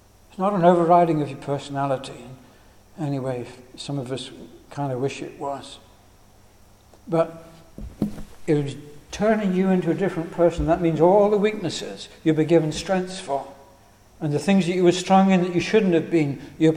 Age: 60-79